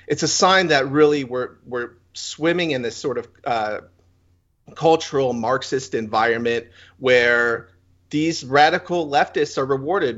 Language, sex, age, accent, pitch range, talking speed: English, male, 40-59, American, 95-135 Hz, 130 wpm